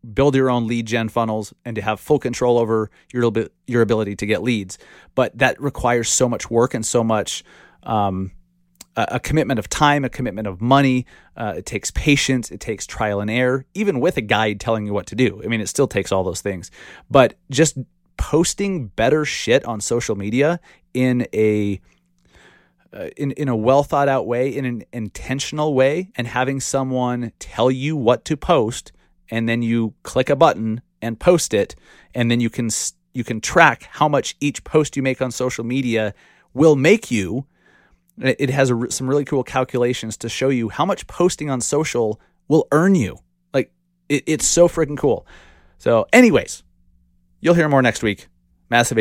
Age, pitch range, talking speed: 30-49, 110-140 Hz, 180 wpm